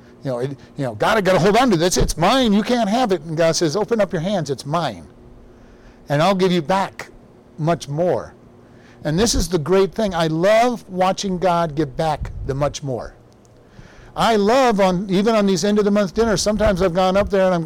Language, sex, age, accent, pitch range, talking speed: English, male, 50-69, American, 160-200 Hz, 230 wpm